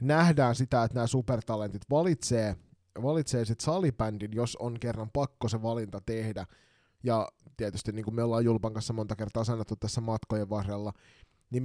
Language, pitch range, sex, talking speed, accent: Finnish, 105-130 Hz, male, 155 wpm, native